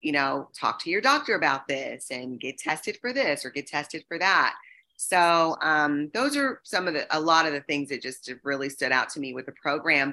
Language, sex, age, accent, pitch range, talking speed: English, female, 30-49, American, 150-190 Hz, 235 wpm